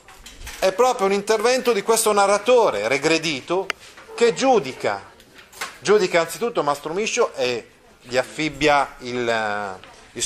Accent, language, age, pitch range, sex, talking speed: native, Italian, 30-49, 140-190 Hz, male, 110 wpm